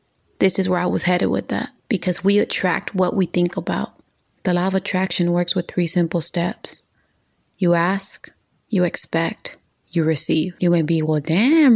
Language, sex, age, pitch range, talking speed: English, female, 20-39, 175-195 Hz, 180 wpm